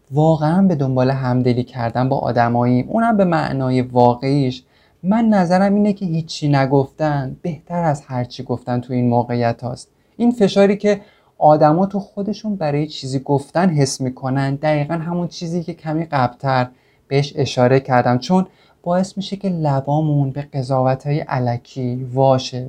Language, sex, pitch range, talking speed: Persian, male, 130-165 Hz, 145 wpm